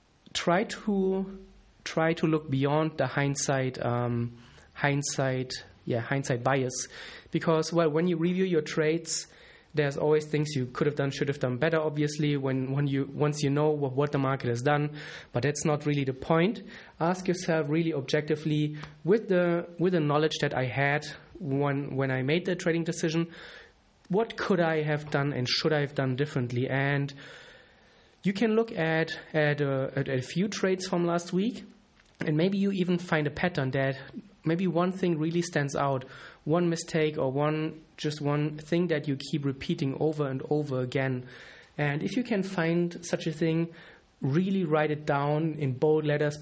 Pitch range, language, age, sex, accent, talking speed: 135-165 Hz, English, 30-49, male, German, 180 wpm